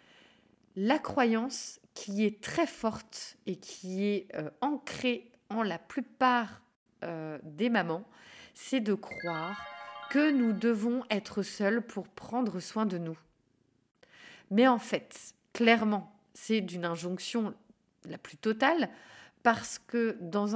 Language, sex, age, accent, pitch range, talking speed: French, female, 30-49, French, 195-250 Hz, 125 wpm